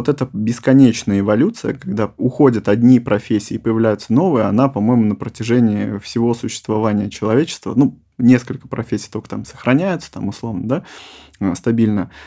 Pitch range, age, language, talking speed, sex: 110-130 Hz, 20-39, Russian, 135 wpm, male